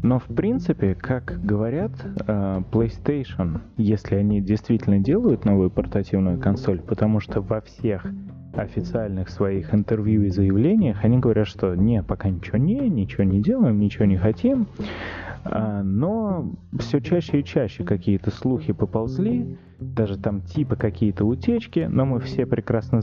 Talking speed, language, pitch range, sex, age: 135 wpm, Russian, 100-125 Hz, male, 20-39